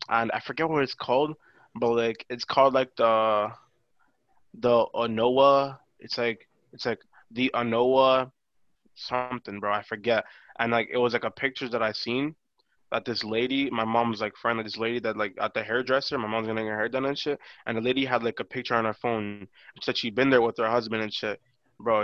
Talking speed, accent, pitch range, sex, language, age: 210 wpm, American, 115-145 Hz, male, English, 20-39